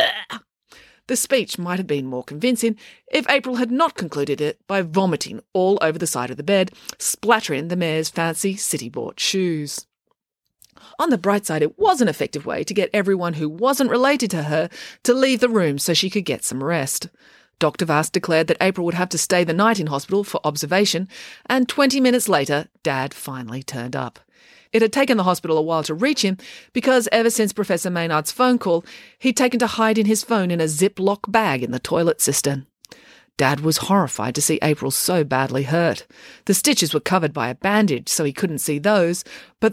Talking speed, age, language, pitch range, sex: 200 wpm, 30-49, English, 155-220 Hz, female